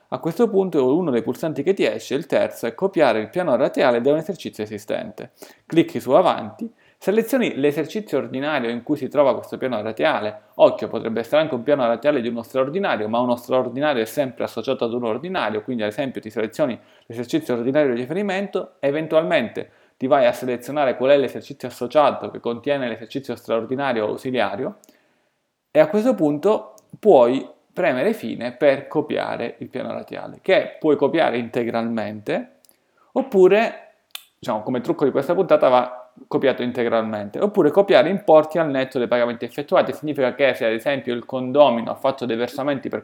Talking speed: 170 wpm